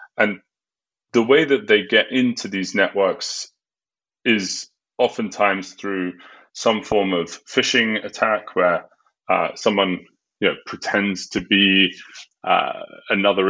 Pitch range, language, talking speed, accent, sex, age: 95-110 Hz, English, 110 wpm, British, male, 30-49